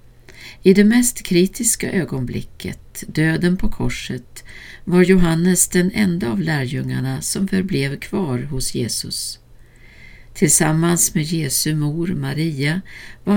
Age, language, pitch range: 60-79, Swedish, 135-190 Hz